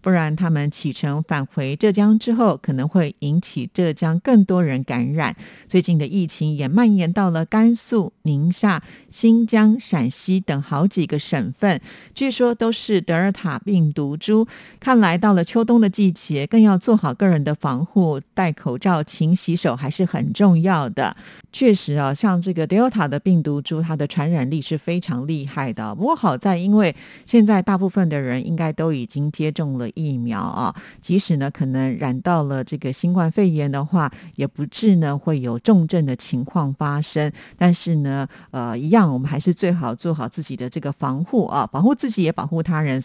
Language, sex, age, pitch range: Chinese, female, 50-69, 145-190 Hz